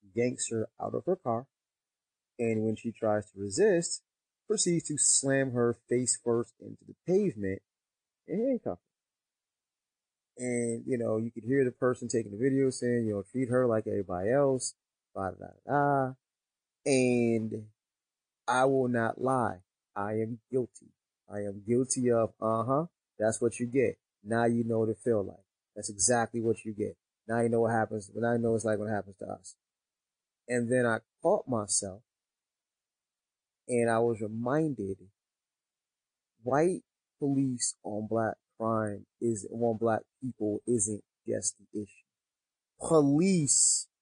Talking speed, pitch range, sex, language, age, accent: 150 wpm, 110-125 Hz, male, English, 30-49, American